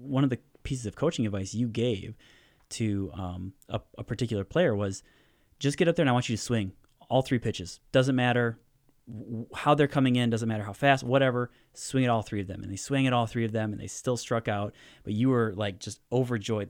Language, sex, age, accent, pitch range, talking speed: English, male, 30-49, American, 105-130 Hz, 235 wpm